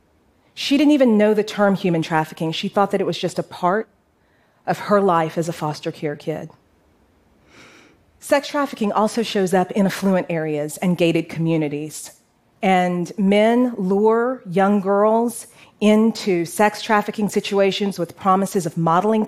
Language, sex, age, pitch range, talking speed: Arabic, female, 40-59, 170-215 Hz, 150 wpm